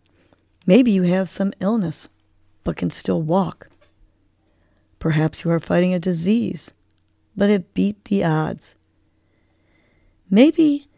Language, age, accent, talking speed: English, 40-59, American, 115 wpm